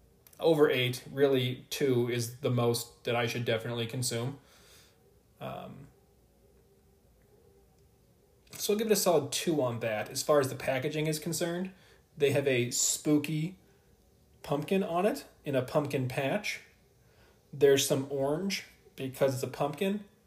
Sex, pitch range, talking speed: male, 125-155 Hz, 140 wpm